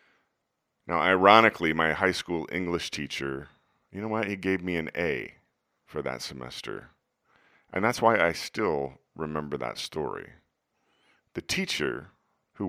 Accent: American